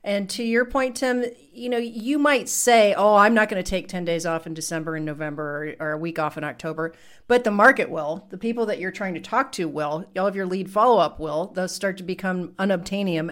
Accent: American